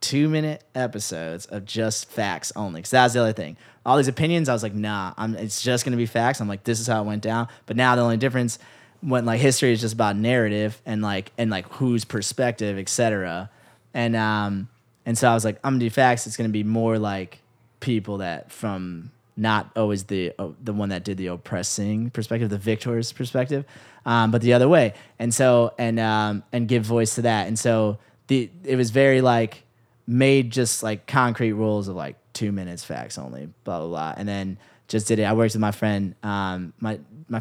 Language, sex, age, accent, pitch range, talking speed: English, male, 20-39, American, 100-120 Hz, 215 wpm